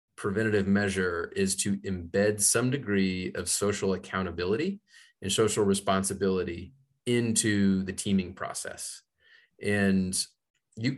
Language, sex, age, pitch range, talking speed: English, male, 30-49, 95-110 Hz, 105 wpm